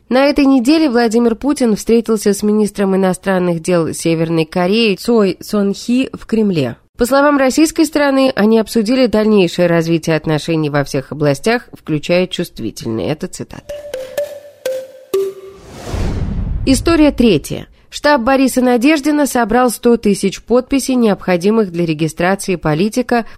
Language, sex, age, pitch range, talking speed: Russian, female, 20-39, 170-245 Hz, 115 wpm